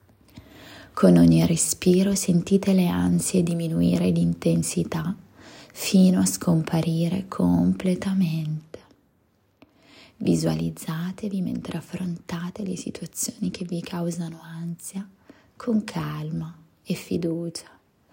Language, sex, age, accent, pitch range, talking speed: Italian, female, 20-39, native, 165-190 Hz, 90 wpm